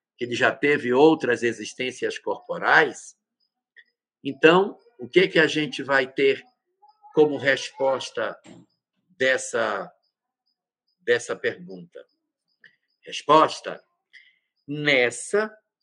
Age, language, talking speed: 60-79, Portuguese, 85 wpm